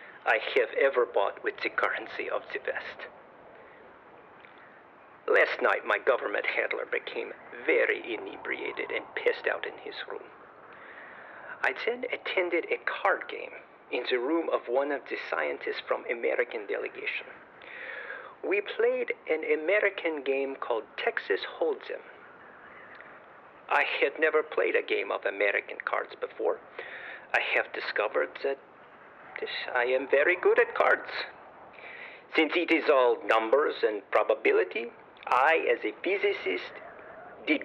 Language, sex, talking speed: English, male, 130 wpm